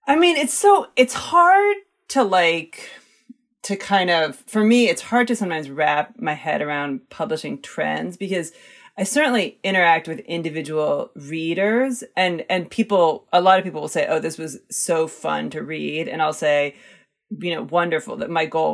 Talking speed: 175 wpm